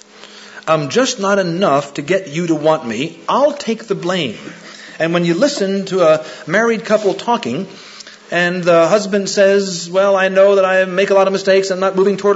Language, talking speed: English, 200 wpm